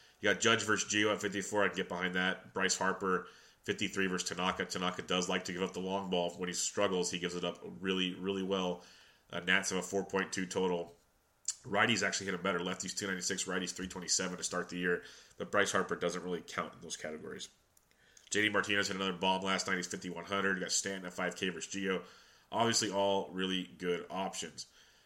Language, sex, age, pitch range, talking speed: English, male, 30-49, 90-95 Hz, 225 wpm